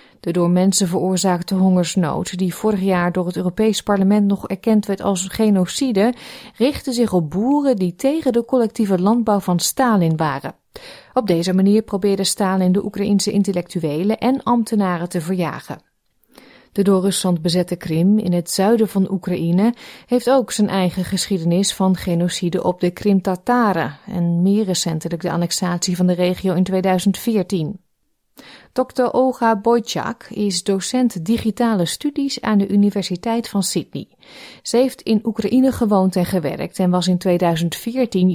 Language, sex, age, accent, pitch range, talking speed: Dutch, female, 30-49, Dutch, 180-225 Hz, 145 wpm